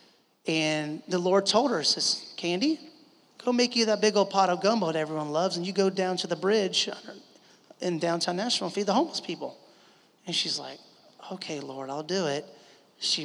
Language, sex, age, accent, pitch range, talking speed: English, male, 30-49, American, 155-185 Hz, 195 wpm